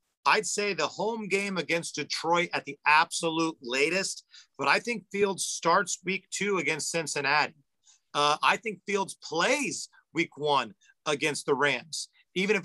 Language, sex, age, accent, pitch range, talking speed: English, male, 40-59, American, 140-180 Hz, 150 wpm